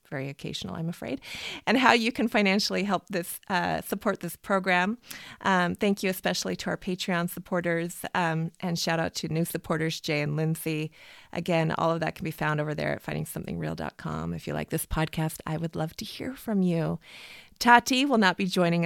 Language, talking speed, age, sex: English, 195 wpm, 30-49, female